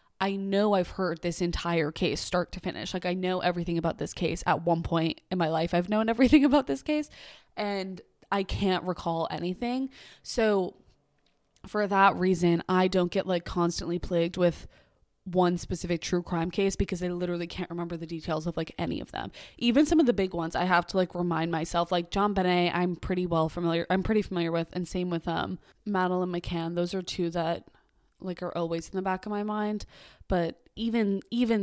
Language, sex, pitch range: English, female, 170-190 Hz